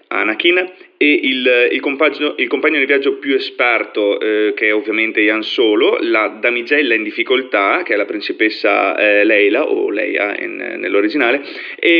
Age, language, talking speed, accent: 30-49, Italian, 160 wpm, native